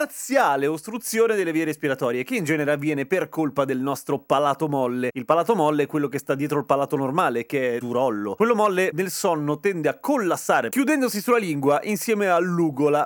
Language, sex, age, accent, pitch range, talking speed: Italian, male, 30-49, native, 140-210 Hz, 185 wpm